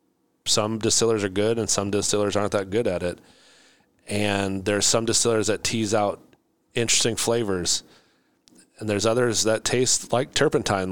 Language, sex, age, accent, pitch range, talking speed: English, male, 30-49, American, 95-115 Hz, 155 wpm